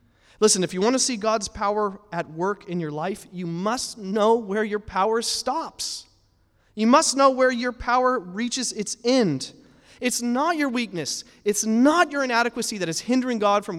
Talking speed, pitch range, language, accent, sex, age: 185 wpm, 140-210 Hz, English, American, male, 30-49